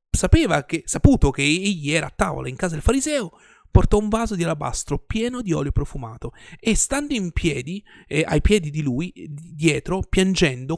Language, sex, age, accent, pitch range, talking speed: Italian, male, 30-49, native, 145-205 Hz, 180 wpm